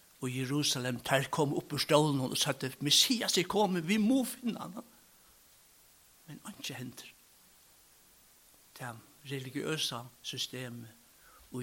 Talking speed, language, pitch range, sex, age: 120 wpm, English, 130-190 Hz, male, 60-79